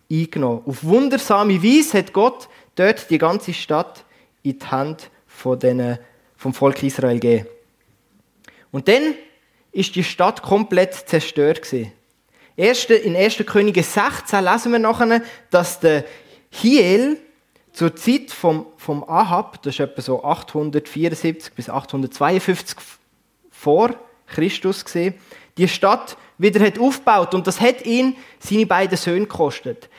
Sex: male